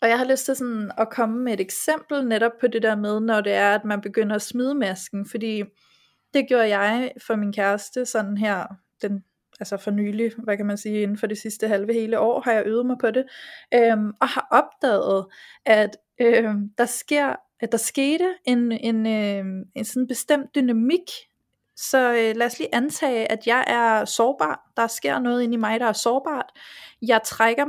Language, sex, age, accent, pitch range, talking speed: Danish, female, 20-39, native, 220-270 Hz, 185 wpm